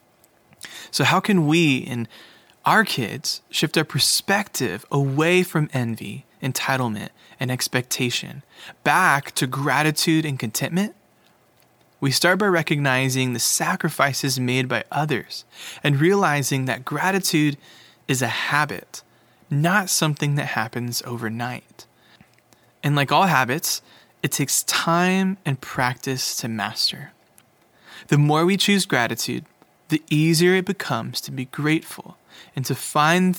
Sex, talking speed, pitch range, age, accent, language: male, 120 wpm, 130-165 Hz, 20-39, American, English